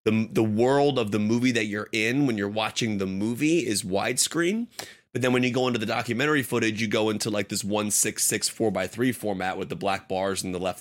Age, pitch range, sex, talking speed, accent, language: 30-49, 105-125 Hz, male, 245 wpm, American, English